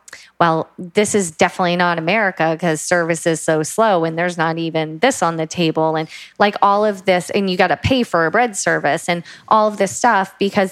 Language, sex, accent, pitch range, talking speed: English, female, American, 165-200 Hz, 220 wpm